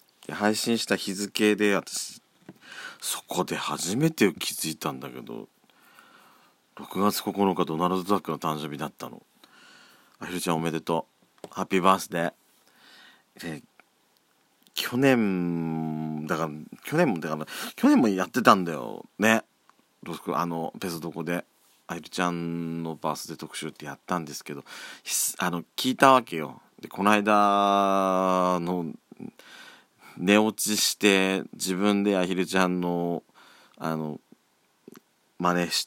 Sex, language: male, Japanese